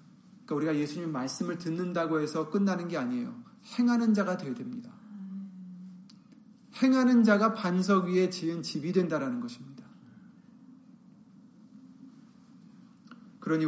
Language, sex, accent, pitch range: Korean, male, native, 180-225 Hz